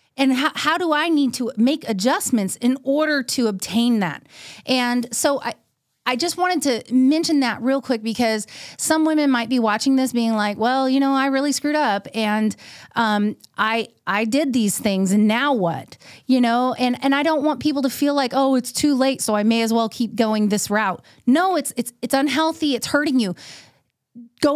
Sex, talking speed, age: female, 205 wpm, 30-49